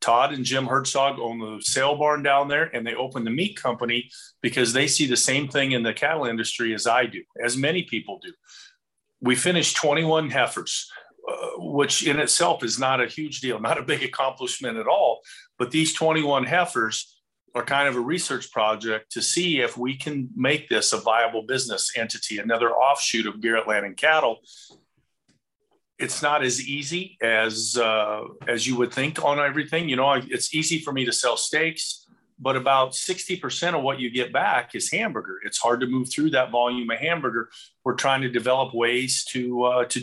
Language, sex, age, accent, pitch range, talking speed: English, male, 40-59, American, 120-150 Hz, 190 wpm